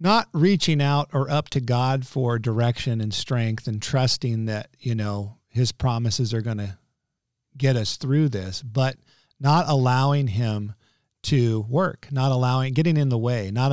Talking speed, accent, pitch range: 165 wpm, American, 115-145 Hz